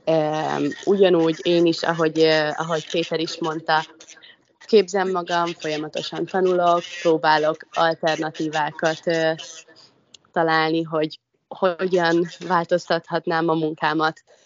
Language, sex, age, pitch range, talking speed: Hungarian, female, 20-39, 160-190 Hz, 85 wpm